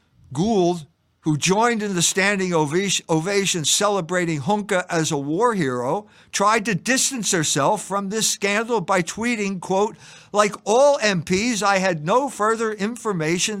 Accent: American